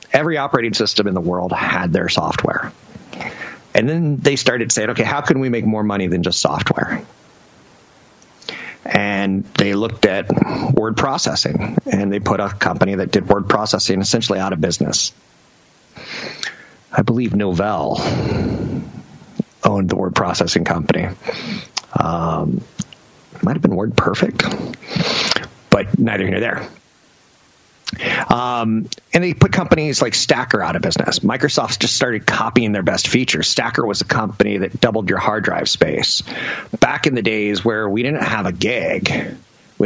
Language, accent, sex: English, American, male